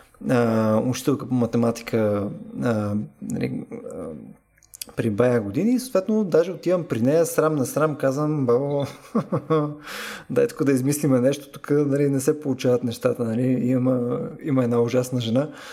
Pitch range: 125-195 Hz